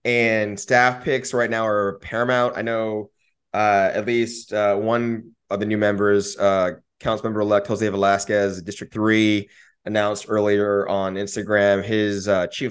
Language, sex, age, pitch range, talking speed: English, male, 20-39, 95-110 Hz, 155 wpm